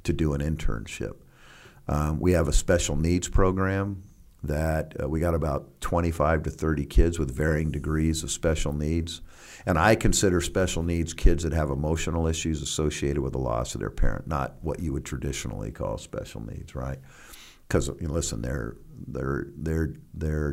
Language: English